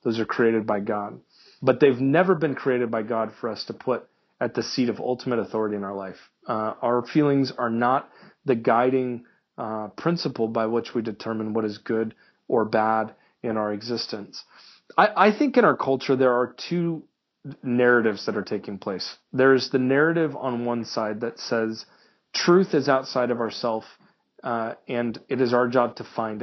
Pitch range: 110-130 Hz